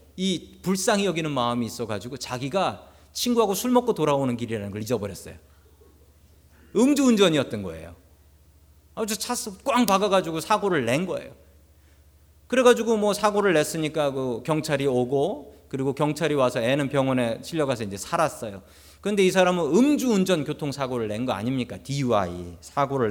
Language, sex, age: Korean, male, 40-59